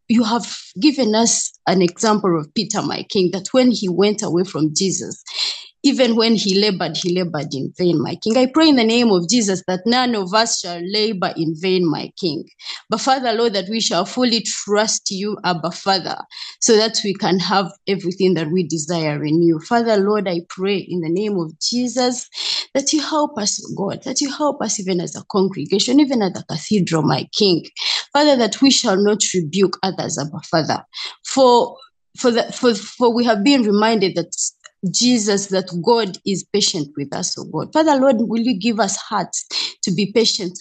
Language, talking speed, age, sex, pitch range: English, 195 wpm, 20-39, female, 180-240 Hz